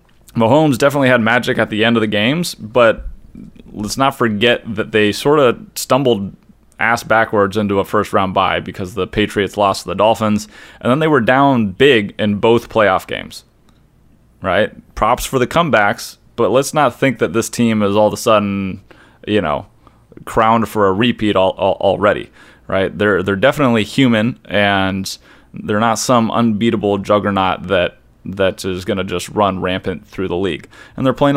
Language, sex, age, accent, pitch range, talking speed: English, male, 30-49, American, 100-125 Hz, 170 wpm